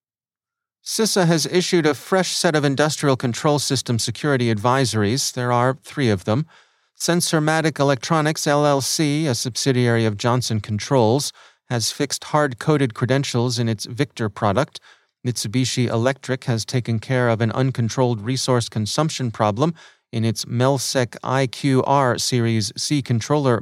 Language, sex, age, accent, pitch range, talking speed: English, male, 30-49, American, 120-155 Hz, 130 wpm